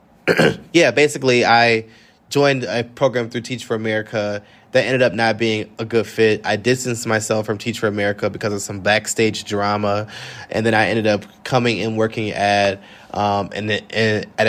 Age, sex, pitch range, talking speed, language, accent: 20-39, male, 105-120 Hz, 180 wpm, English, American